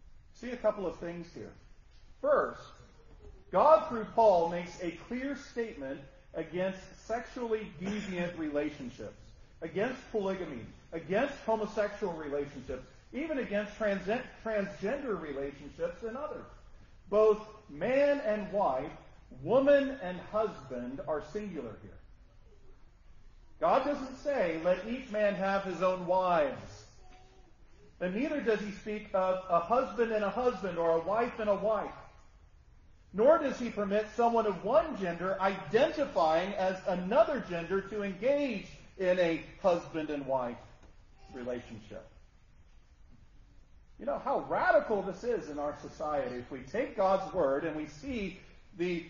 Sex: male